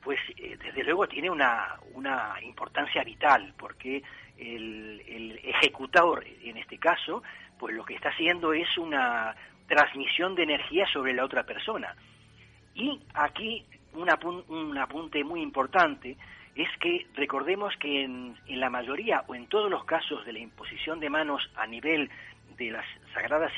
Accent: Argentinian